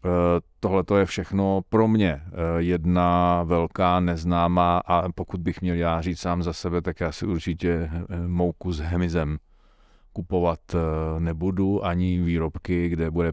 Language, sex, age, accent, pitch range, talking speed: Czech, male, 40-59, native, 85-90 Hz, 135 wpm